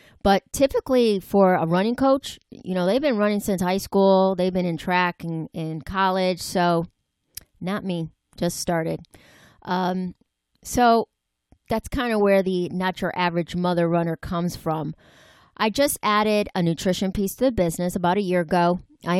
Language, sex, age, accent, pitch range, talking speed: English, female, 30-49, American, 175-215 Hz, 170 wpm